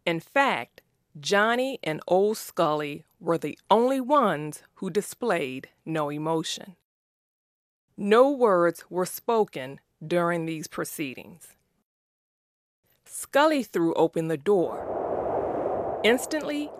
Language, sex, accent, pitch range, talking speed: English, female, American, 160-235 Hz, 95 wpm